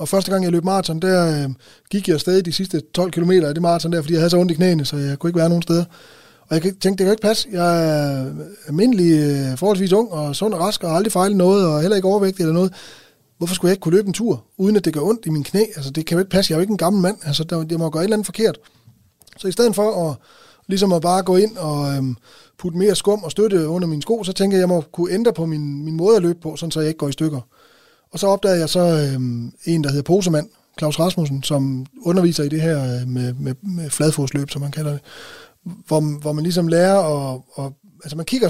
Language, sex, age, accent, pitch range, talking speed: Danish, male, 20-39, native, 150-190 Hz, 275 wpm